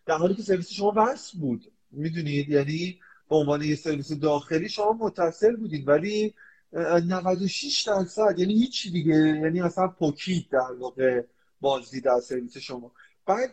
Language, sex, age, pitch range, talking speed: Persian, male, 30-49, 145-200 Hz, 145 wpm